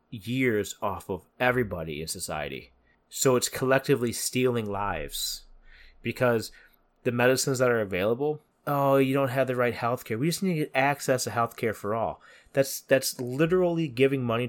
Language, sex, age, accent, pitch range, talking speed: English, male, 30-49, American, 105-130 Hz, 160 wpm